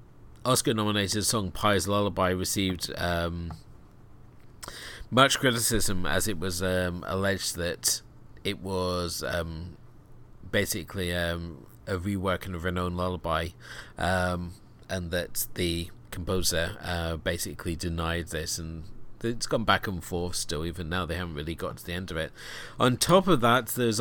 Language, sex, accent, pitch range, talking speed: English, male, British, 90-110 Hz, 140 wpm